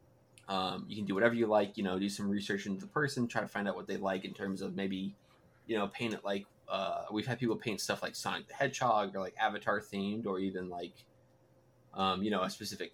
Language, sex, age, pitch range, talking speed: English, male, 20-39, 95-115 Hz, 245 wpm